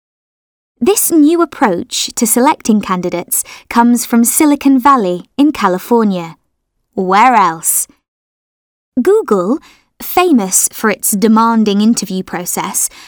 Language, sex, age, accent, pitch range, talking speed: English, female, 20-39, British, 195-275 Hz, 95 wpm